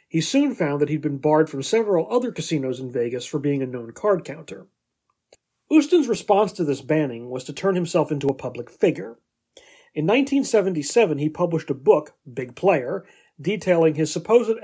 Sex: male